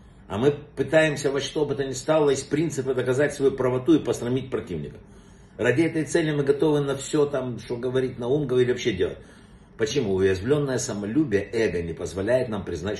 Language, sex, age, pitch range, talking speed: Russian, male, 60-79, 125-155 Hz, 185 wpm